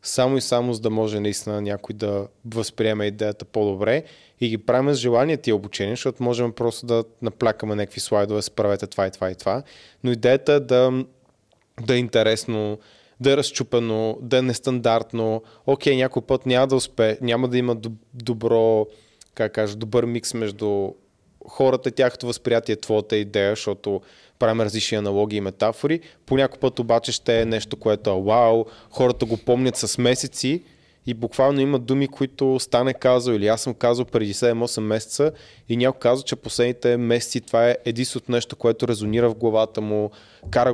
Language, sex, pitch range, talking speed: Bulgarian, male, 110-130 Hz, 170 wpm